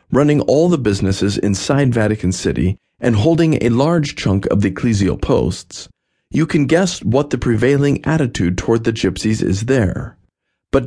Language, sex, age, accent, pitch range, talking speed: English, male, 50-69, American, 95-135 Hz, 160 wpm